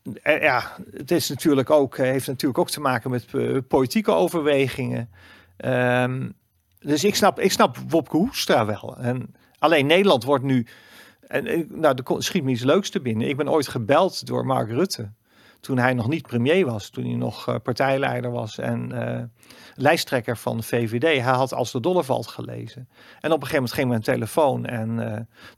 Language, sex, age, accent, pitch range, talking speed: Dutch, male, 40-59, Dutch, 120-150 Hz, 180 wpm